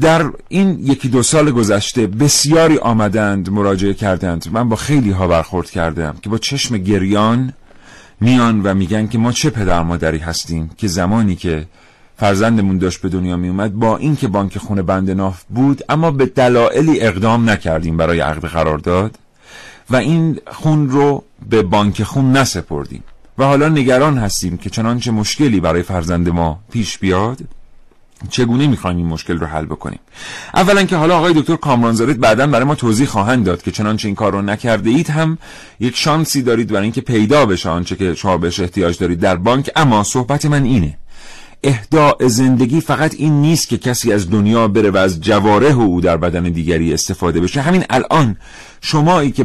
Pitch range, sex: 95-140 Hz, male